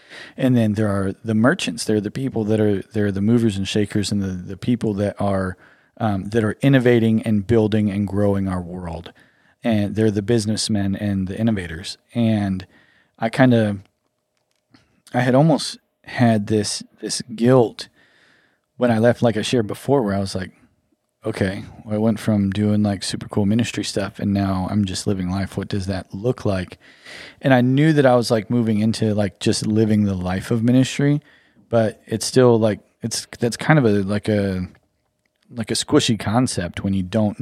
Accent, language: American, English